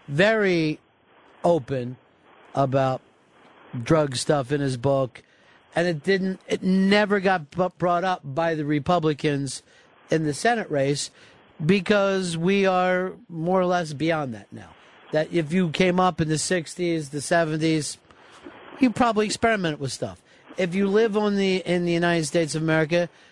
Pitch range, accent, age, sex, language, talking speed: 145-185 Hz, American, 50-69, male, English, 150 wpm